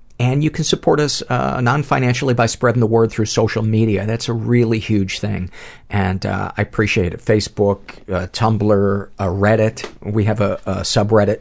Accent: American